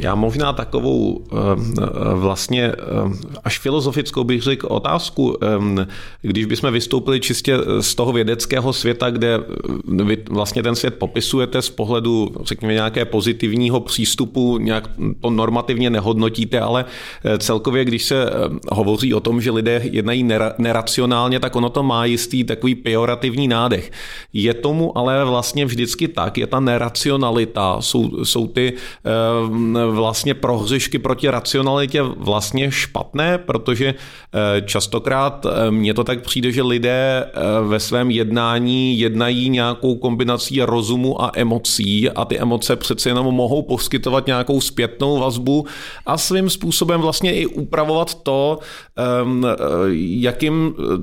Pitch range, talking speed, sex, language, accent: 115-135 Hz, 125 wpm, male, Czech, native